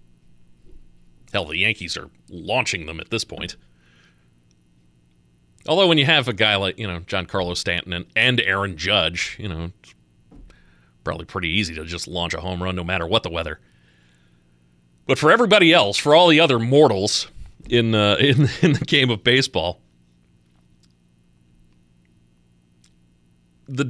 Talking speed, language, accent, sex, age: 145 wpm, English, American, male, 40-59